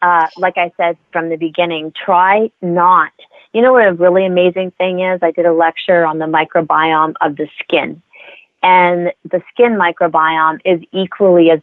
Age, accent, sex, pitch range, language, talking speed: 30-49, American, female, 160-185 Hz, English, 175 wpm